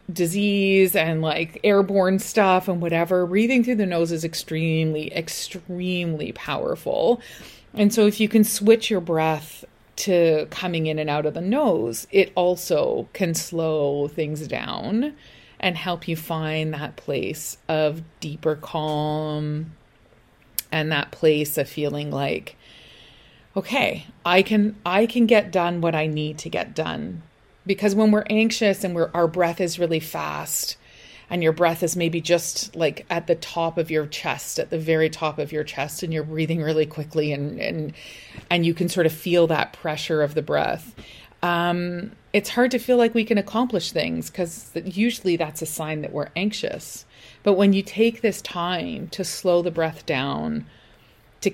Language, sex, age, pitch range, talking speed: English, female, 30-49, 155-195 Hz, 170 wpm